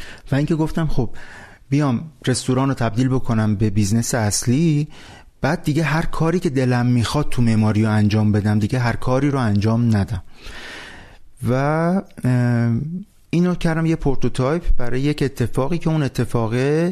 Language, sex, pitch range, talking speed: Persian, male, 110-140 Hz, 145 wpm